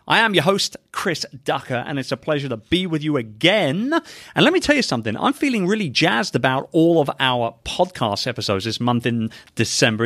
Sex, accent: male, British